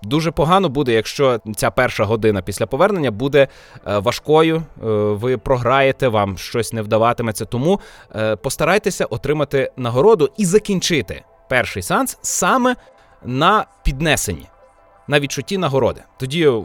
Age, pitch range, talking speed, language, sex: 20-39, 110-145 Hz, 115 wpm, Ukrainian, male